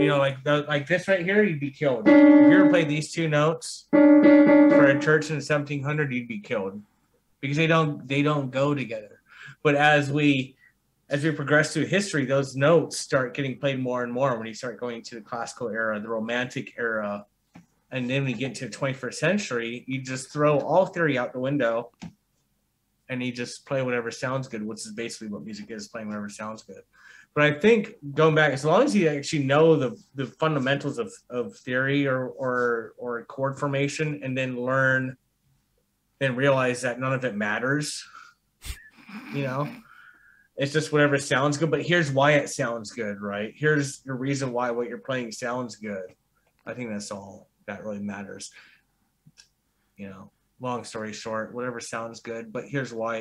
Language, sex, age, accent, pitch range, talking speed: English, male, 30-49, American, 120-150 Hz, 185 wpm